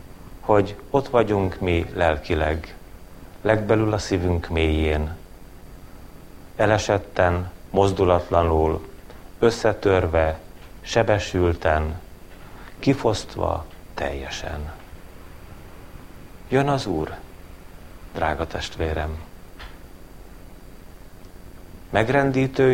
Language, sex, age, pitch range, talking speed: Hungarian, male, 40-59, 90-105 Hz, 55 wpm